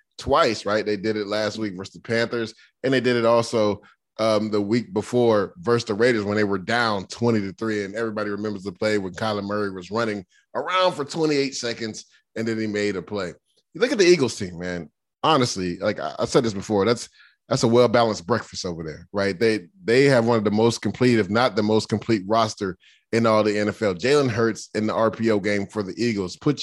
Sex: male